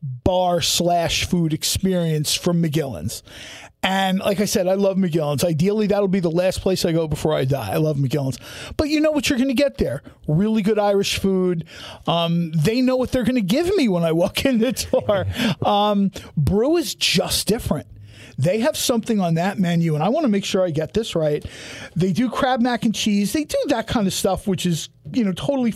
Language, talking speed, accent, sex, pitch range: English, 210 wpm, American, male, 165-215 Hz